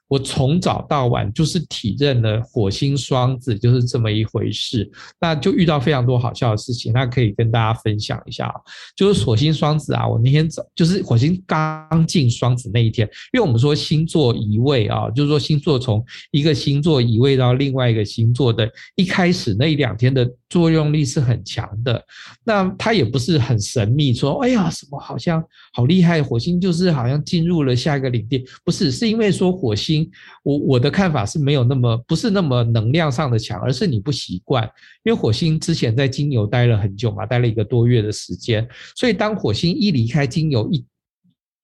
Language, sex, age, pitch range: Chinese, male, 50-69, 115-155 Hz